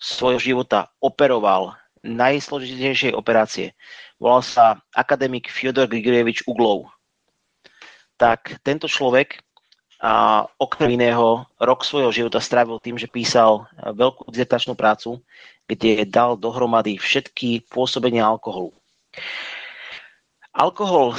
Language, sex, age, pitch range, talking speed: Slovak, male, 30-49, 110-130 Hz, 95 wpm